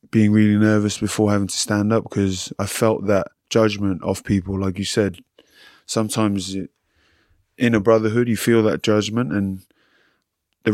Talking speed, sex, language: 155 wpm, male, English